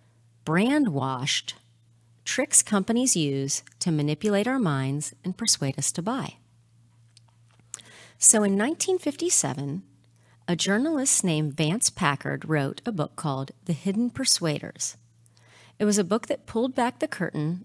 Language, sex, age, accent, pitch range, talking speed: English, female, 40-59, American, 120-190 Hz, 125 wpm